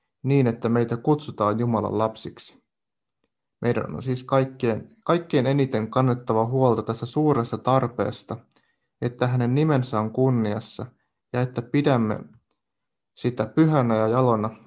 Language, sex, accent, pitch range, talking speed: Finnish, male, native, 110-130 Hz, 120 wpm